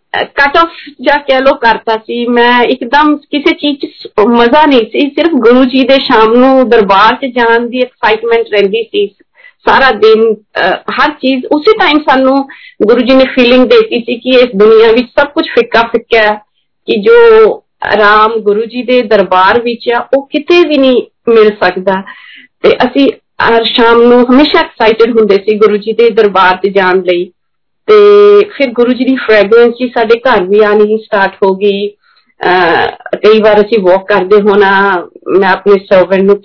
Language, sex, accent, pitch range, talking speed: Hindi, female, native, 210-275 Hz, 95 wpm